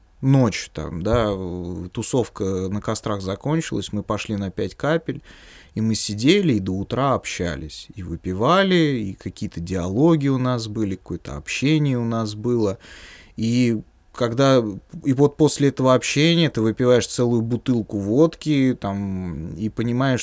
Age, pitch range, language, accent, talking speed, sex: 20-39, 100-125 Hz, Russian, native, 140 wpm, male